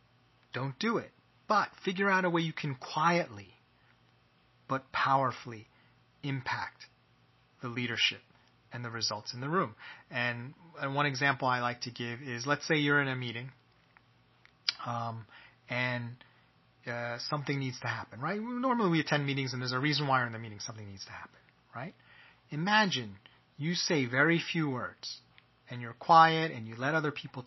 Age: 30-49